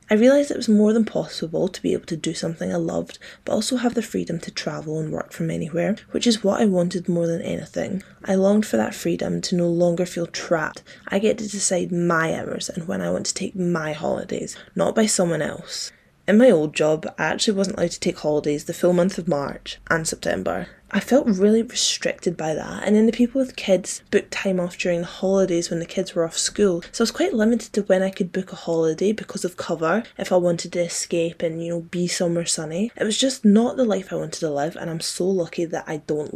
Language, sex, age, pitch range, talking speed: English, female, 10-29, 170-210 Hz, 245 wpm